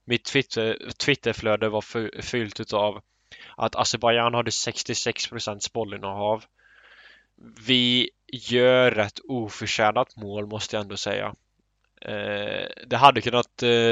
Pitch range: 105-120 Hz